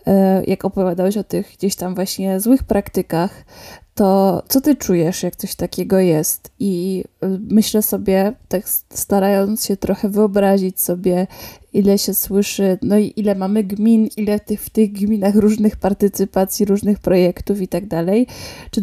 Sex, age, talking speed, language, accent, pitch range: female, 20-39, 145 wpm, Polish, native, 195-215 Hz